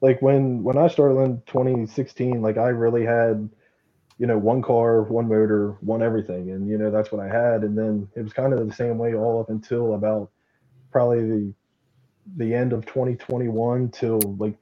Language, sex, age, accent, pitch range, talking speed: English, male, 20-39, American, 110-125 Hz, 195 wpm